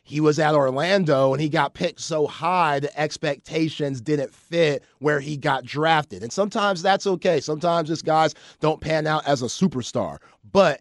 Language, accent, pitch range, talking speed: English, American, 135-155 Hz, 180 wpm